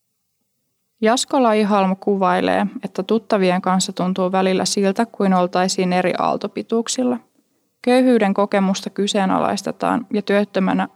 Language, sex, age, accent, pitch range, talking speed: Finnish, female, 20-39, native, 195-235 Hz, 100 wpm